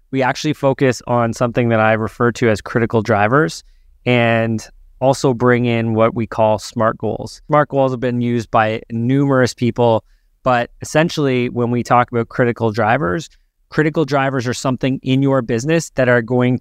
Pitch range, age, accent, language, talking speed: 120-140 Hz, 20-39, American, English, 170 wpm